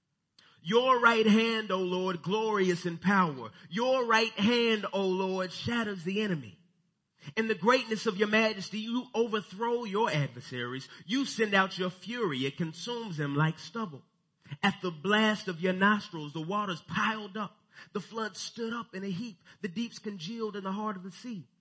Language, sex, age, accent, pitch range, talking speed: English, male, 30-49, American, 155-210 Hz, 170 wpm